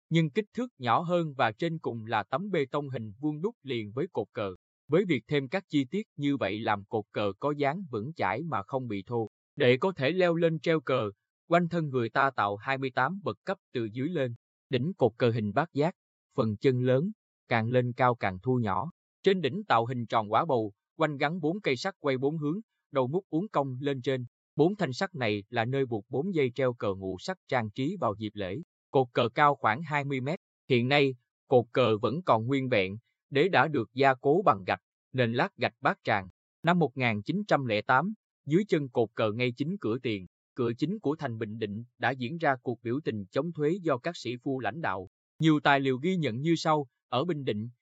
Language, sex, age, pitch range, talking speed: Vietnamese, male, 20-39, 115-155 Hz, 220 wpm